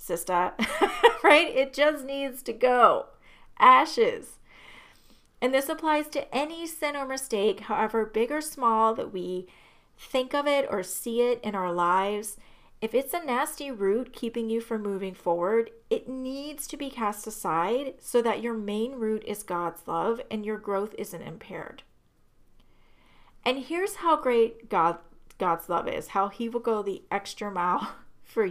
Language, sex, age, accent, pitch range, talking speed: English, female, 30-49, American, 190-265 Hz, 160 wpm